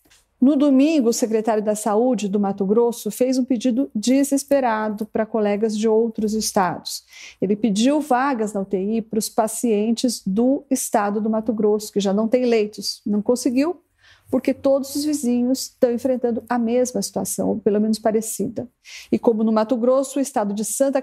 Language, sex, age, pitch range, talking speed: Portuguese, female, 40-59, 210-255 Hz, 170 wpm